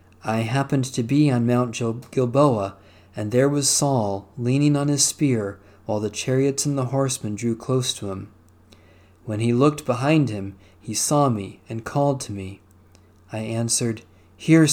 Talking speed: 165 wpm